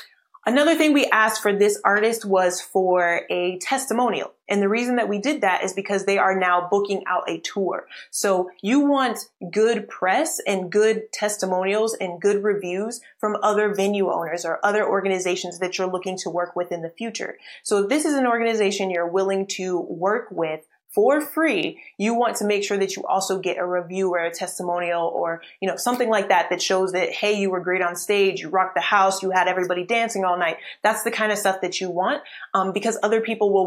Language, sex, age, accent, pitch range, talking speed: English, female, 20-39, American, 180-210 Hz, 210 wpm